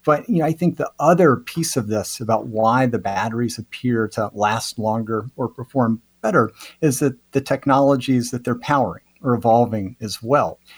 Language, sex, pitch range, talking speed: English, male, 110-135 Hz, 180 wpm